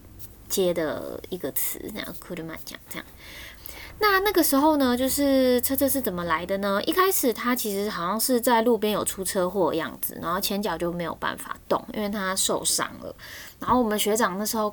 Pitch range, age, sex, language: 180-250 Hz, 20-39, female, Chinese